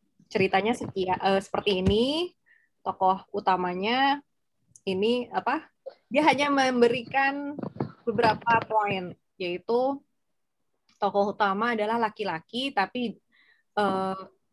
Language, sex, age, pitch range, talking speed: Indonesian, female, 20-39, 195-235 Hz, 85 wpm